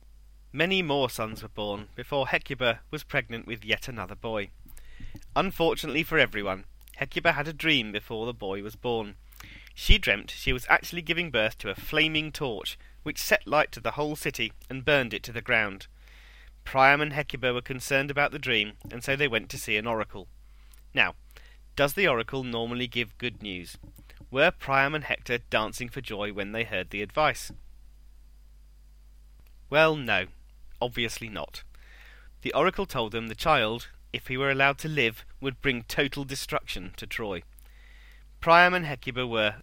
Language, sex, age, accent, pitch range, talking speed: English, male, 30-49, British, 105-145 Hz, 170 wpm